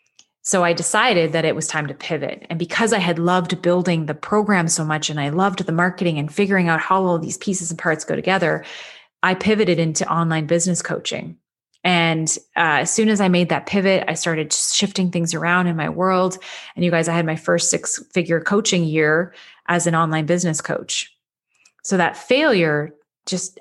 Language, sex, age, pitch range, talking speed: English, female, 30-49, 165-190 Hz, 195 wpm